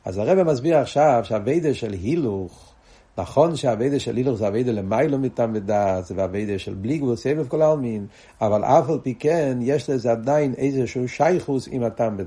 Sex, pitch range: male, 115-160 Hz